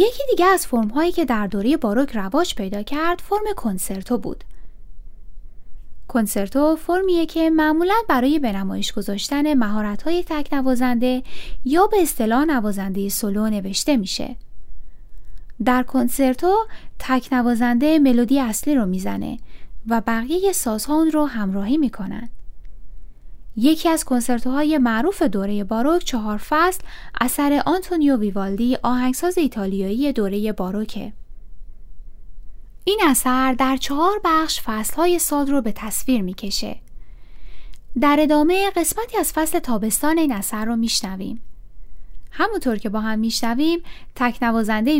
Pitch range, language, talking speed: 205-305 Hz, Persian, 120 wpm